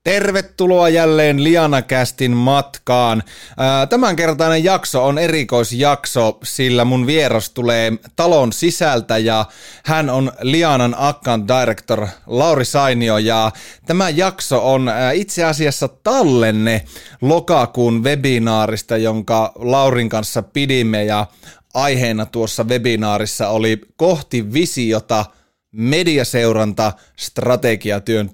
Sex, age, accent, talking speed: male, 30-49, native, 95 wpm